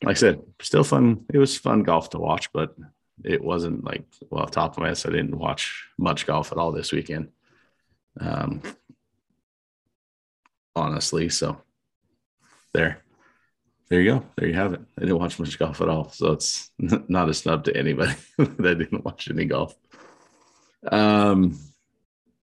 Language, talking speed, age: English, 165 wpm, 30-49